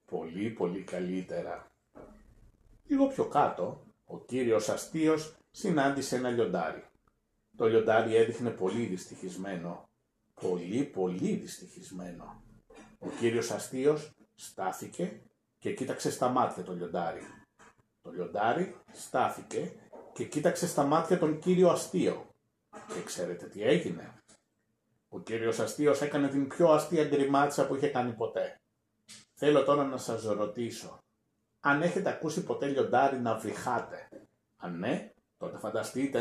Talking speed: 120 wpm